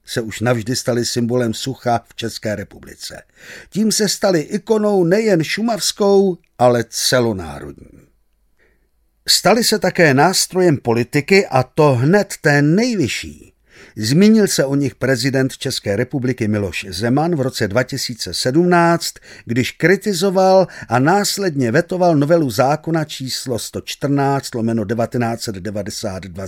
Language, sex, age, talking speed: Czech, male, 50-69, 110 wpm